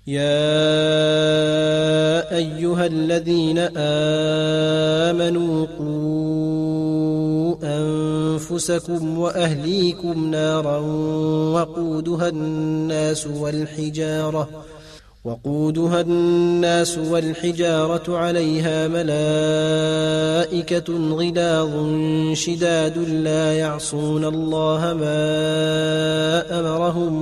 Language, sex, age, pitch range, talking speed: Arabic, male, 20-39, 155-165 Hz, 50 wpm